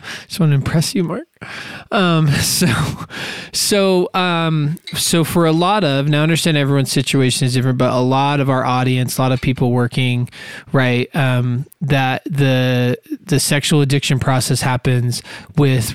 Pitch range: 125-150 Hz